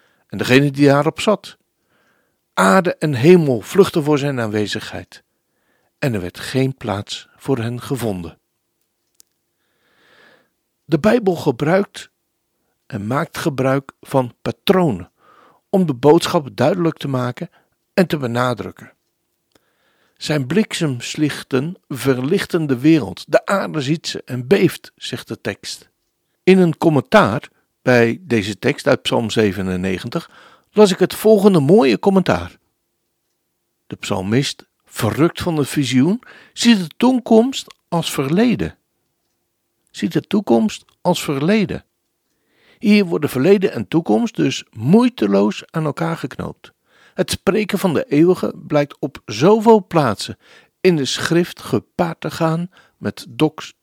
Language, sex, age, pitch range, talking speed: Dutch, male, 60-79, 130-185 Hz, 120 wpm